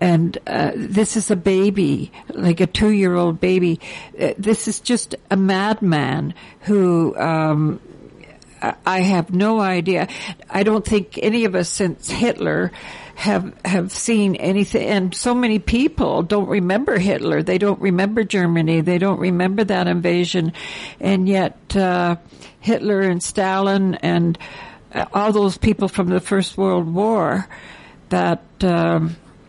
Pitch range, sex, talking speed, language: 180-230 Hz, female, 140 wpm, English